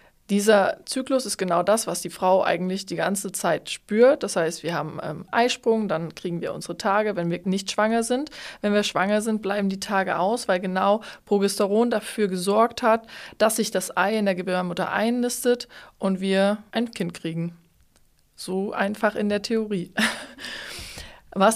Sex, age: female, 20-39